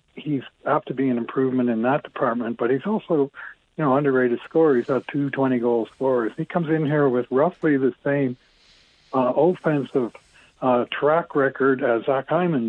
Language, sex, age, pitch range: English, male, 60-79, 120-145 Hz